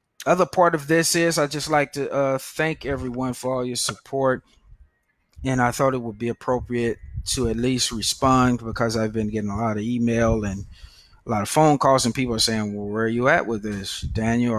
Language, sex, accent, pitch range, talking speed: English, male, American, 110-130 Hz, 220 wpm